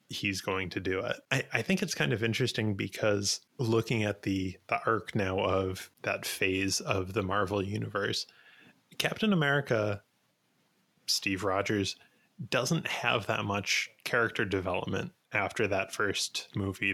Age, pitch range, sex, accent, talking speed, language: 20-39, 95-115 Hz, male, American, 140 wpm, English